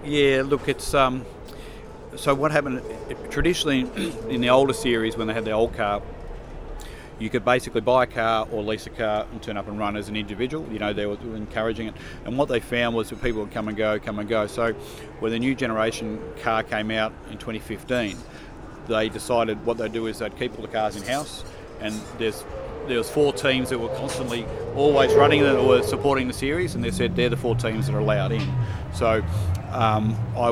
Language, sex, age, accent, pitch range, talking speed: English, male, 40-59, Australian, 105-120 Hz, 220 wpm